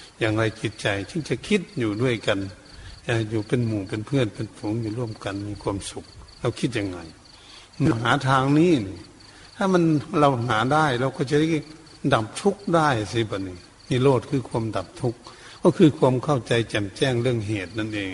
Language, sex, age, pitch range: Thai, male, 70-89, 105-130 Hz